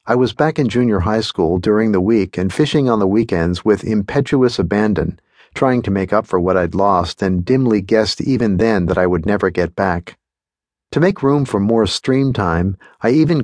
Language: English